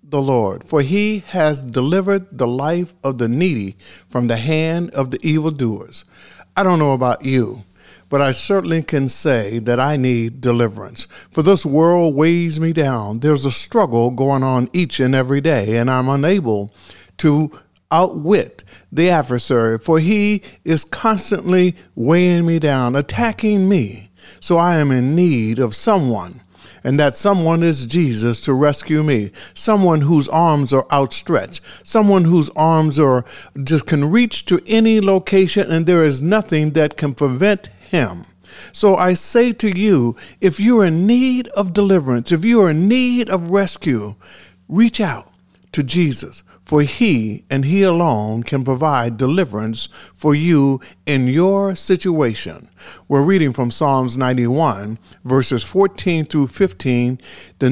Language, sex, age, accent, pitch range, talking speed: English, male, 50-69, American, 125-185 Hz, 150 wpm